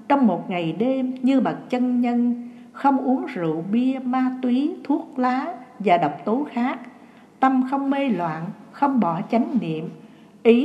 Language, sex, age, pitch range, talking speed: Vietnamese, female, 60-79, 210-250 Hz, 165 wpm